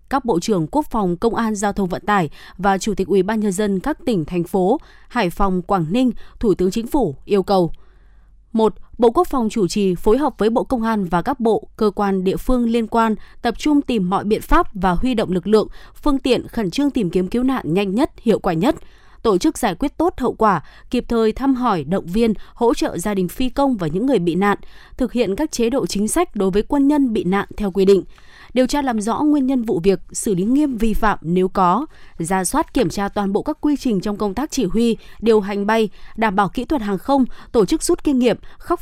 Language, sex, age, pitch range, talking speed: Vietnamese, female, 20-39, 195-260 Hz, 250 wpm